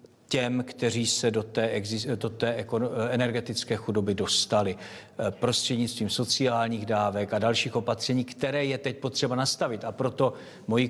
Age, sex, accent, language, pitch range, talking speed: 50-69, male, native, Czech, 110-120 Hz, 125 wpm